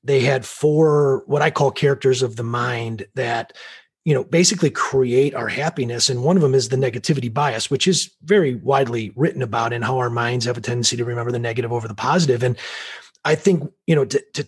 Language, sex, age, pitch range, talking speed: English, male, 30-49, 120-160 Hz, 215 wpm